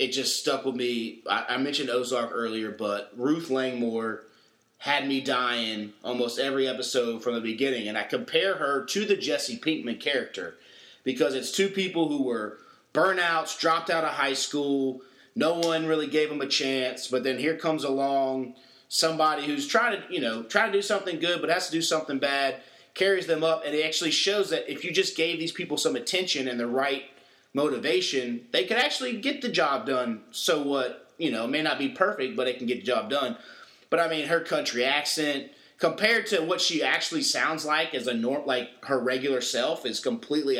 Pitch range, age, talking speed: 125-165 Hz, 30-49, 200 wpm